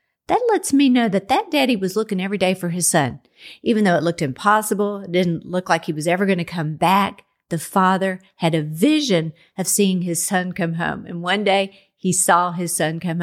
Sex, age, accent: female, 50-69, American